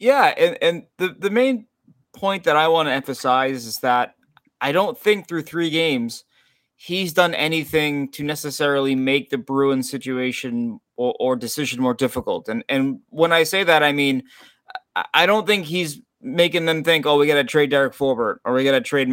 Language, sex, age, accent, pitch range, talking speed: English, male, 20-39, American, 130-175 Hz, 190 wpm